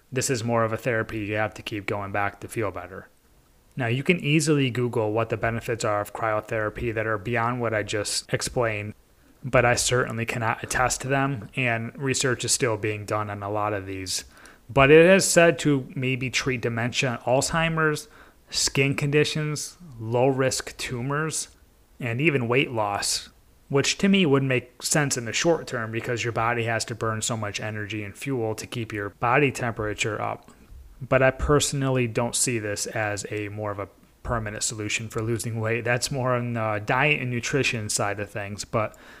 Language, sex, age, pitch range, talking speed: English, male, 30-49, 115-140 Hz, 185 wpm